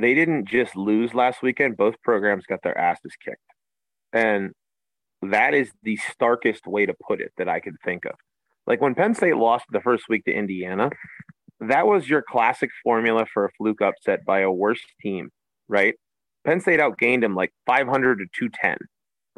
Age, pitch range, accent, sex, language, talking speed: 30-49, 105-135 Hz, American, male, English, 180 wpm